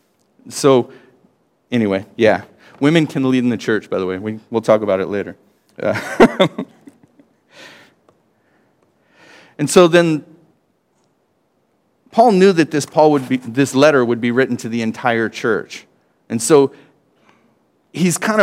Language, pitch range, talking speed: English, 120-160 Hz, 135 wpm